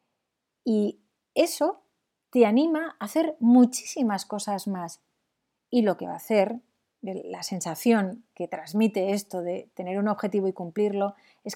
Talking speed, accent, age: 140 wpm, Spanish, 30-49